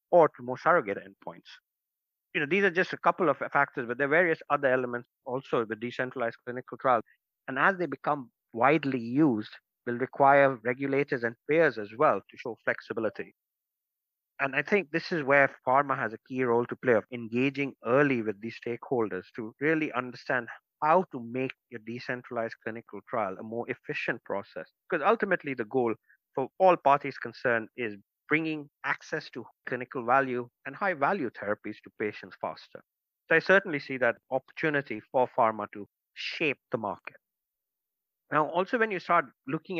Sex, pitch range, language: male, 115-150 Hz, English